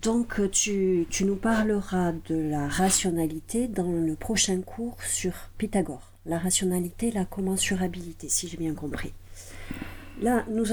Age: 50-69